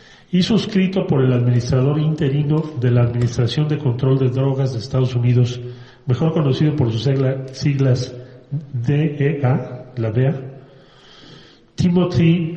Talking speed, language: 125 wpm, Spanish